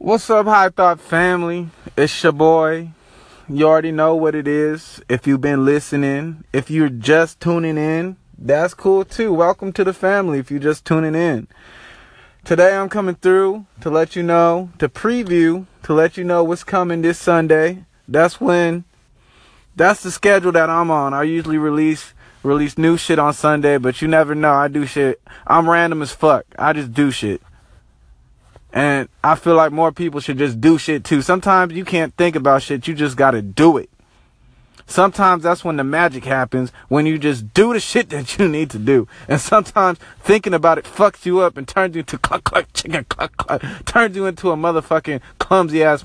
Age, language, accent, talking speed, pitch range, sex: 20-39, English, American, 190 wpm, 140-180 Hz, male